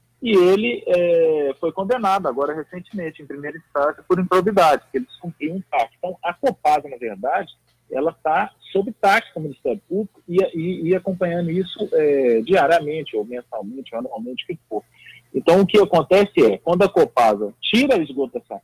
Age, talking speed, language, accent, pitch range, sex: 40-59, 175 wpm, Portuguese, Brazilian, 145-210 Hz, male